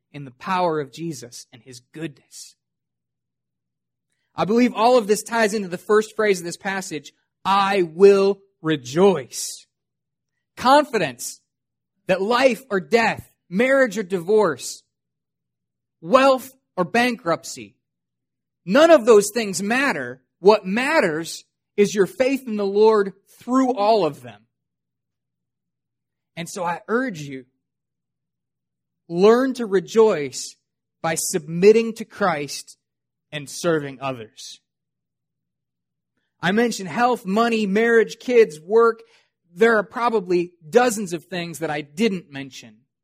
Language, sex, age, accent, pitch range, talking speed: English, male, 30-49, American, 150-220 Hz, 115 wpm